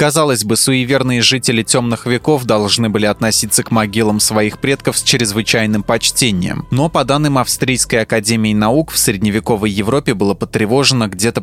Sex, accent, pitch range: male, native, 105-130 Hz